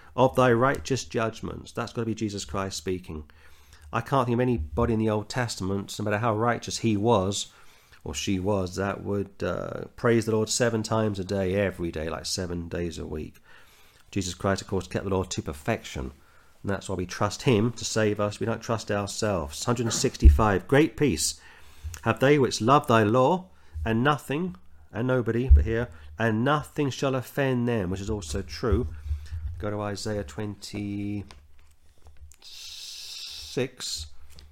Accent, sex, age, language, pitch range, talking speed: British, male, 40-59, English, 85-120 Hz, 165 wpm